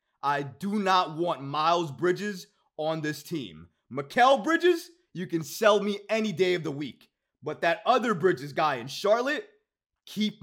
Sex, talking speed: male, 160 wpm